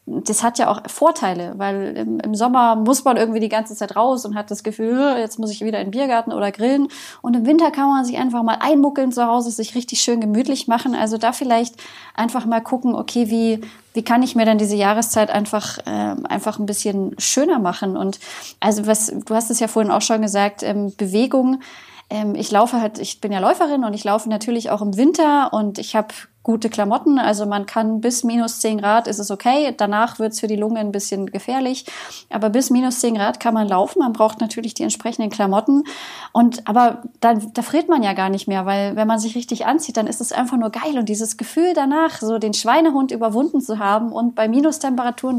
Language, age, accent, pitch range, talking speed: German, 20-39, German, 215-250 Hz, 220 wpm